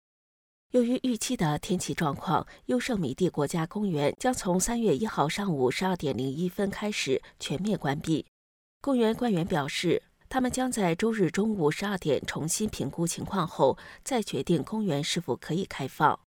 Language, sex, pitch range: Chinese, female, 155-225 Hz